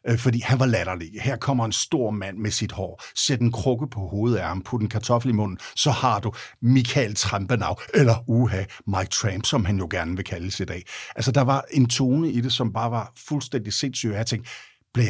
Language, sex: Danish, male